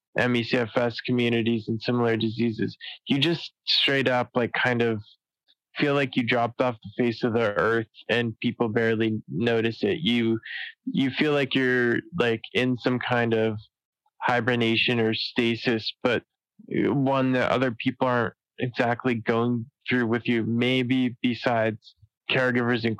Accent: American